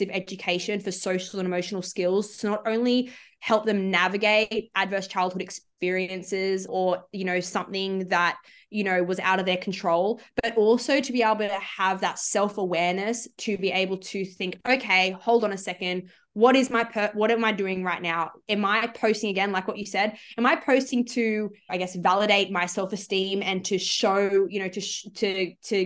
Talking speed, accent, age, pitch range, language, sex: 190 wpm, Australian, 20-39, 185-215 Hz, English, female